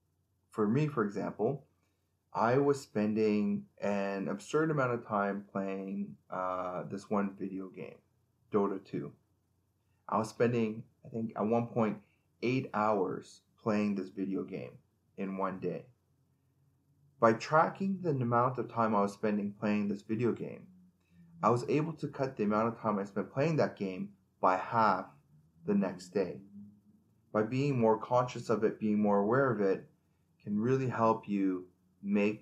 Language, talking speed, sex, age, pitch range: English, 155 wpm, male, 30-49, 95-120 Hz